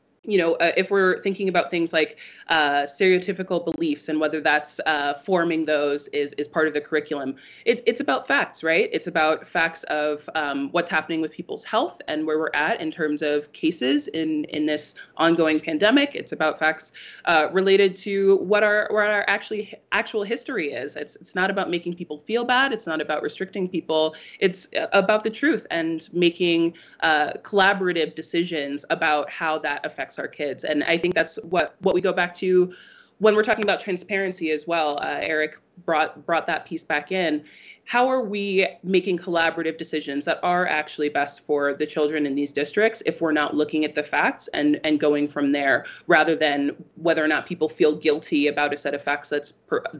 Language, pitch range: English, 150-185 Hz